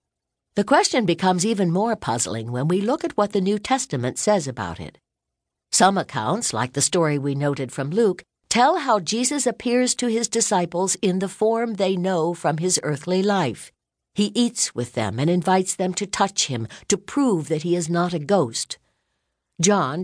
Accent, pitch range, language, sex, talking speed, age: American, 150-230 Hz, English, female, 185 wpm, 60-79